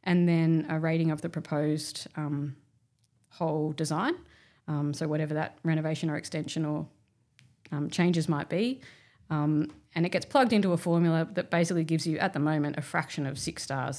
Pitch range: 150-170 Hz